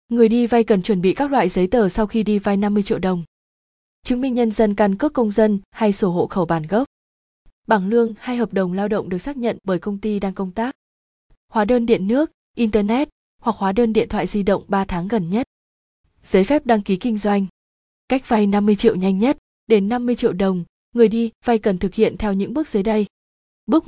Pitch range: 195-230 Hz